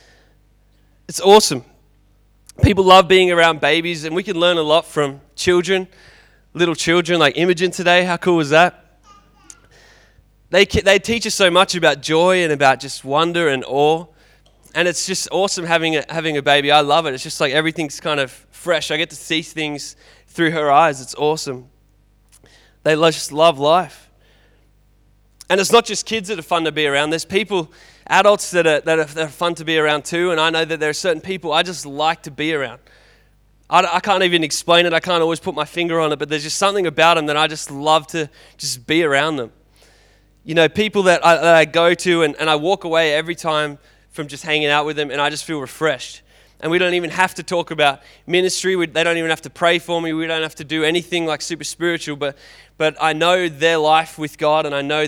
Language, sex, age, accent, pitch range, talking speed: English, male, 20-39, Australian, 150-175 Hz, 220 wpm